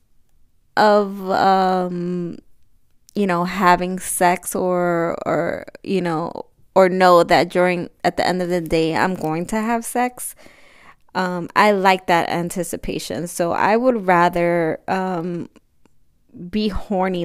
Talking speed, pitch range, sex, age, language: 130 wpm, 170-195 Hz, female, 20-39, English